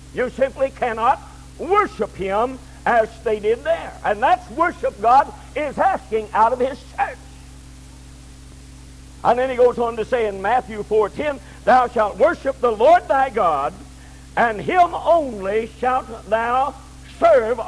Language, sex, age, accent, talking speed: English, male, 60-79, American, 145 wpm